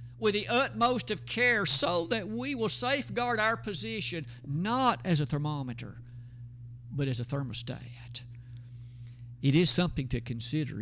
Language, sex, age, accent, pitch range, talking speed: English, male, 50-69, American, 120-185 Hz, 140 wpm